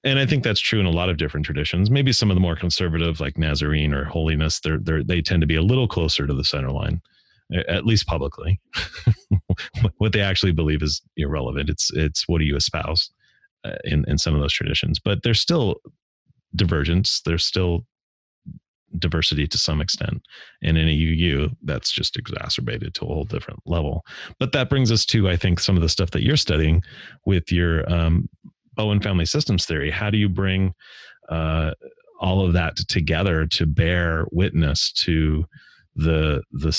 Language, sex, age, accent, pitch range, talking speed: English, male, 30-49, American, 80-95 Hz, 190 wpm